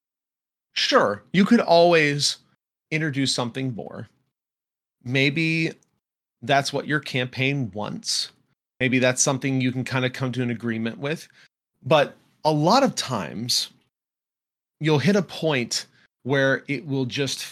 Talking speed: 130 wpm